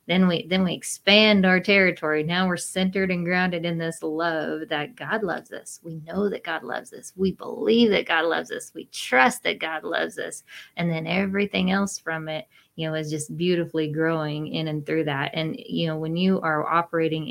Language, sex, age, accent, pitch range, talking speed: English, female, 20-39, American, 155-180 Hz, 210 wpm